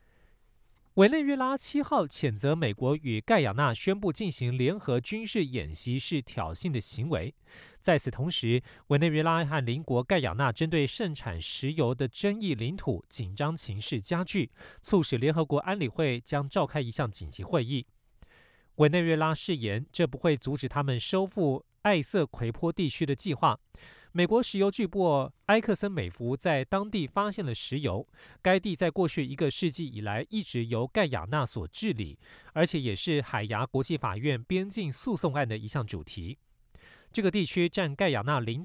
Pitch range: 120-175 Hz